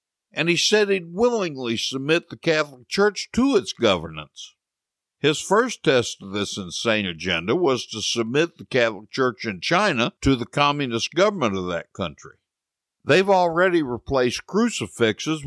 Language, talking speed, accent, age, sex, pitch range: English, 145 wpm, American, 60-79, male, 120-175 Hz